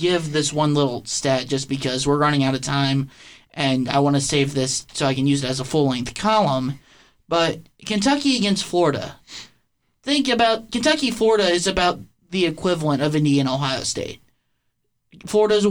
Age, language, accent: 20-39, English, American